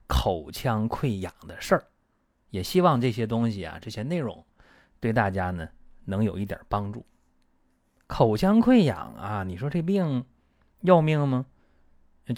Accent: native